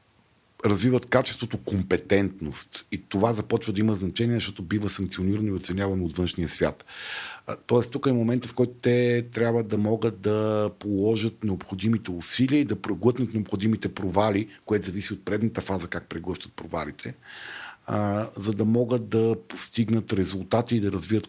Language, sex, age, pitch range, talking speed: Bulgarian, male, 50-69, 105-125 Hz, 150 wpm